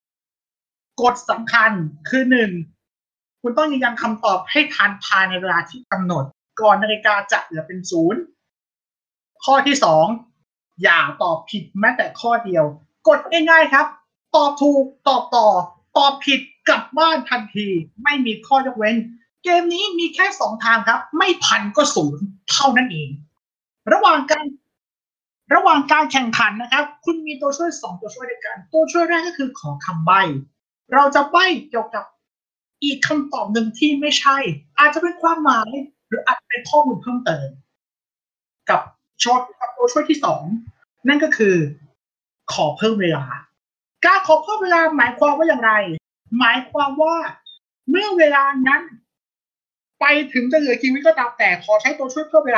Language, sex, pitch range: Thai, male, 210-300 Hz